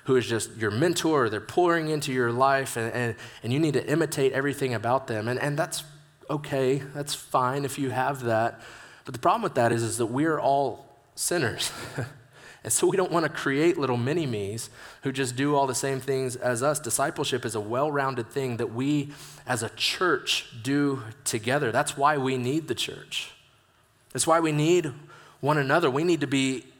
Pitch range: 120-145 Hz